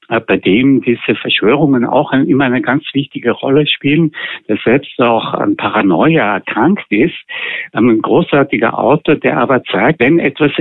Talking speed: 145 wpm